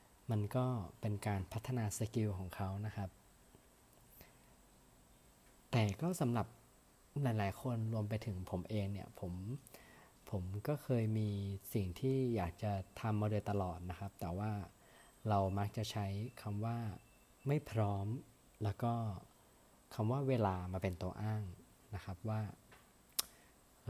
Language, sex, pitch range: Thai, male, 95-120 Hz